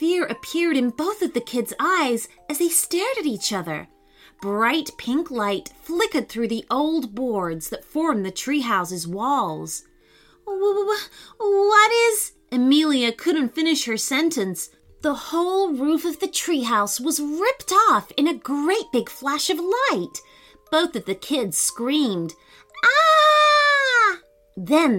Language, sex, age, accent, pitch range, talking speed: English, female, 30-49, American, 215-340 Hz, 135 wpm